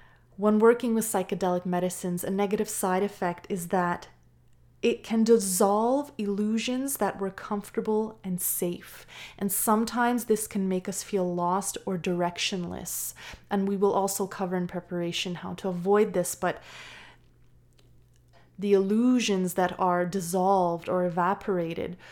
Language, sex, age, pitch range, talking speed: English, female, 20-39, 180-220 Hz, 135 wpm